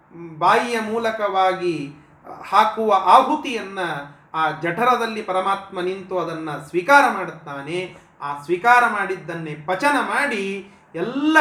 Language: Kannada